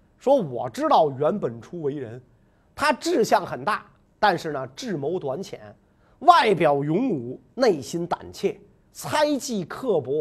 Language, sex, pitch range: Chinese, male, 140-235 Hz